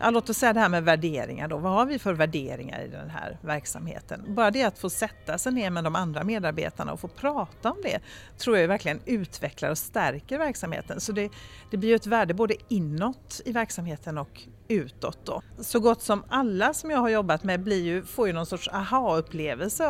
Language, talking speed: Swedish, 210 wpm